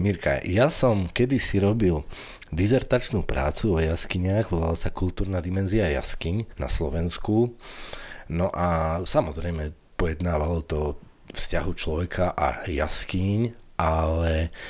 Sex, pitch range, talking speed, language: male, 85-110 Hz, 105 wpm, Slovak